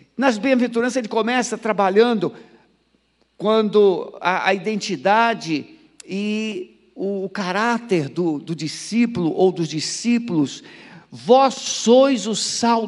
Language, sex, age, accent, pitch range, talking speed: Portuguese, male, 60-79, Brazilian, 220-285 Hz, 105 wpm